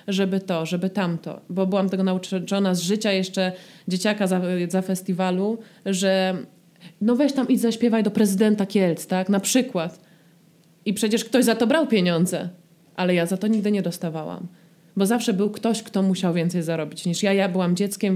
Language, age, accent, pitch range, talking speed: Polish, 20-39, native, 175-205 Hz, 180 wpm